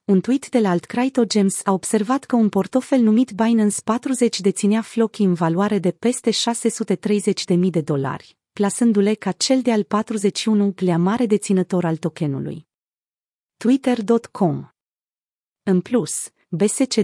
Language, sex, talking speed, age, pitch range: Romanian, female, 135 wpm, 30-49, 180-230 Hz